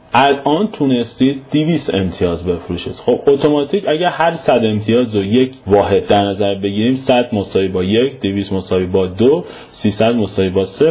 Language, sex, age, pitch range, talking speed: Persian, male, 40-59, 100-145 Hz, 150 wpm